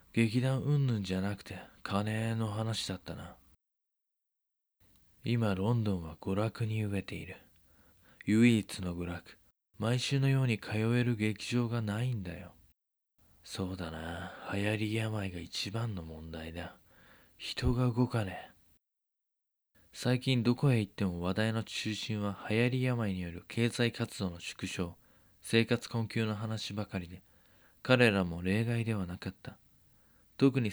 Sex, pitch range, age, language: male, 95-120 Hz, 20-39, Japanese